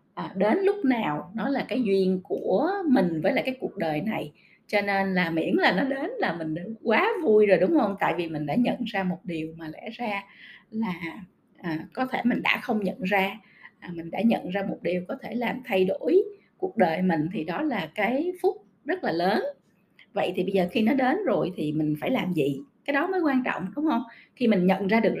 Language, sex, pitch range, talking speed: Vietnamese, female, 185-265 Hz, 225 wpm